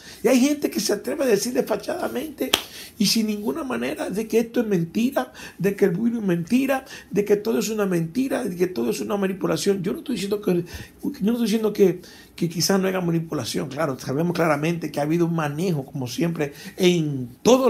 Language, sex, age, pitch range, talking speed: Spanish, male, 60-79, 130-200 Hz, 215 wpm